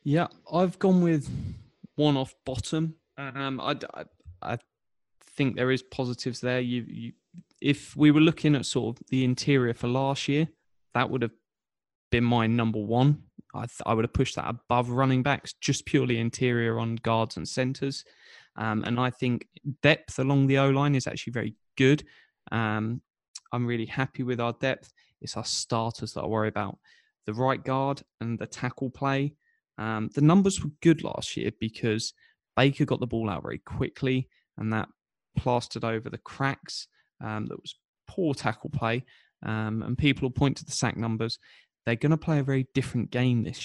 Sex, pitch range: male, 115-140 Hz